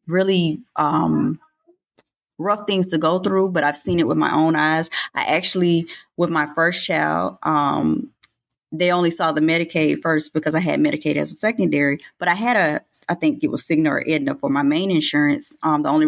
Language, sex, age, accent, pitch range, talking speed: English, female, 20-39, American, 145-190 Hz, 200 wpm